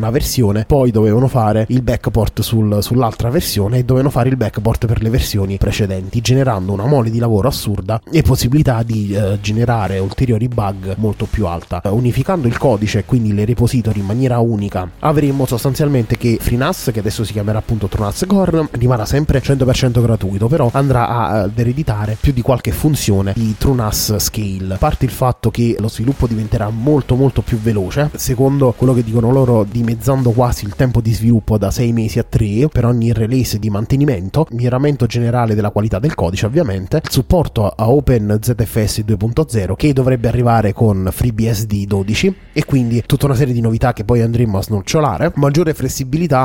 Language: Italian